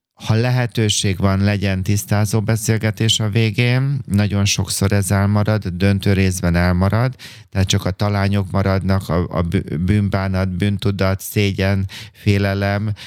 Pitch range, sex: 95-110 Hz, male